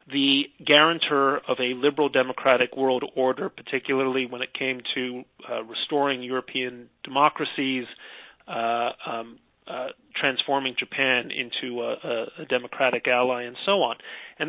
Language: English